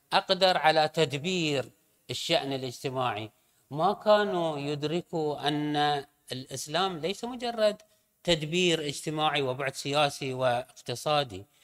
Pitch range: 135-175 Hz